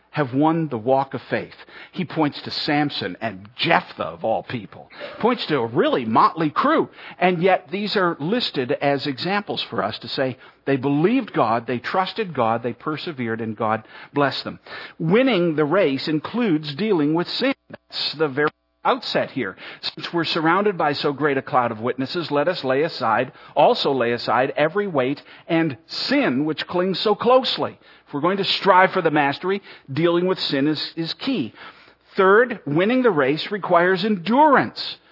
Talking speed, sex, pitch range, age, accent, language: 175 wpm, male, 145-195 Hz, 50-69, American, English